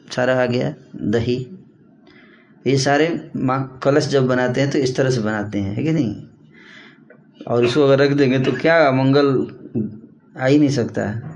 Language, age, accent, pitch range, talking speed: Hindi, 20-39, native, 115-150 Hz, 160 wpm